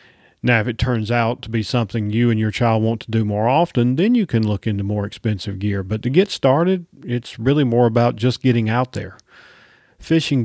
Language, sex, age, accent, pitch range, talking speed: English, male, 40-59, American, 110-140 Hz, 220 wpm